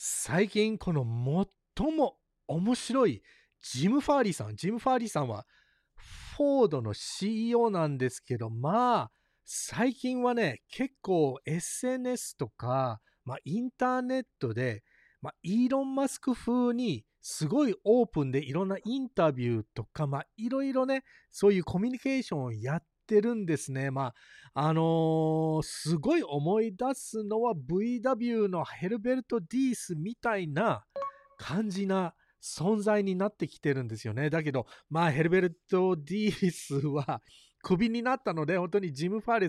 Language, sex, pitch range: Japanese, male, 150-235 Hz